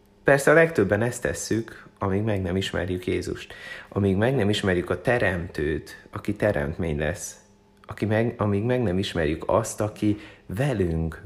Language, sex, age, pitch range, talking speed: Hungarian, male, 30-49, 85-105 Hz, 150 wpm